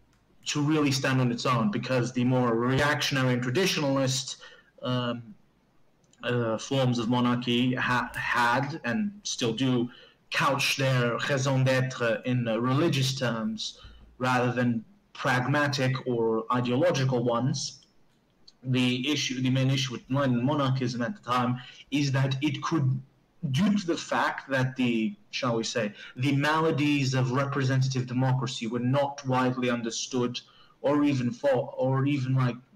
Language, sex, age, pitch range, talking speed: English, male, 30-49, 125-145 Hz, 135 wpm